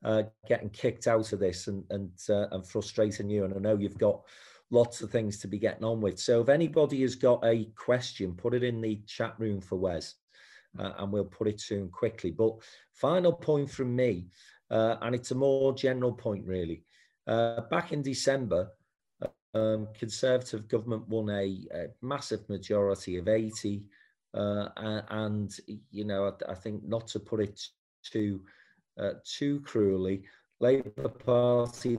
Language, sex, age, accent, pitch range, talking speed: English, male, 40-59, British, 105-125 Hz, 170 wpm